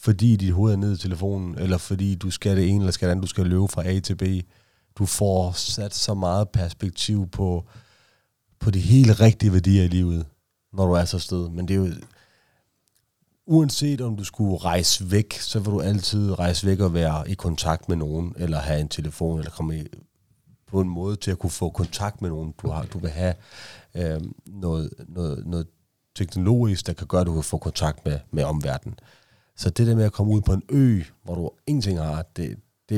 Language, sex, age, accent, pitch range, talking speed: Danish, male, 30-49, native, 85-100 Hz, 210 wpm